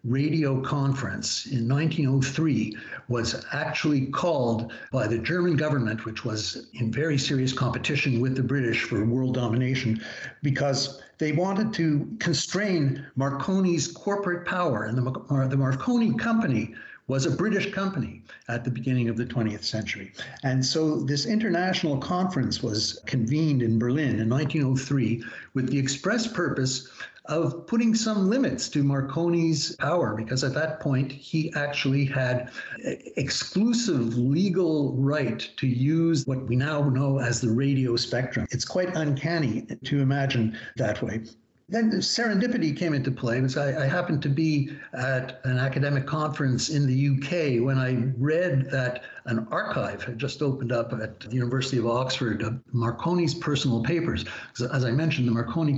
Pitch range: 125-155 Hz